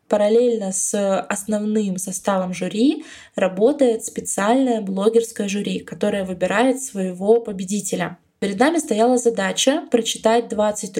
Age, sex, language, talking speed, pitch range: 20-39, female, Russian, 105 wpm, 195-235 Hz